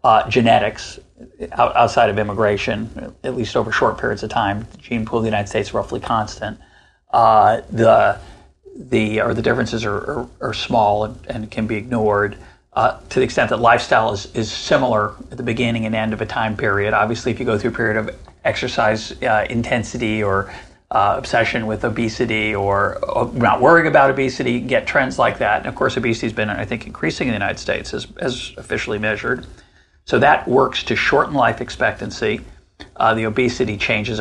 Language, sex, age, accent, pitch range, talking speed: English, male, 40-59, American, 105-125 Hz, 195 wpm